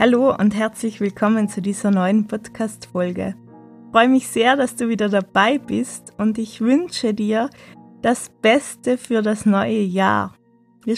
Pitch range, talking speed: 205-240 Hz, 155 wpm